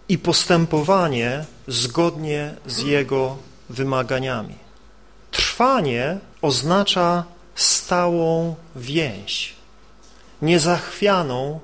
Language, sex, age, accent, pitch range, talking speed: Polish, male, 40-59, native, 140-185 Hz, 55 wpm